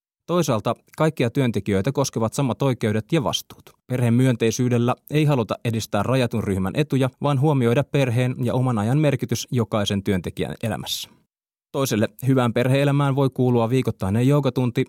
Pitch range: 105-130 Hz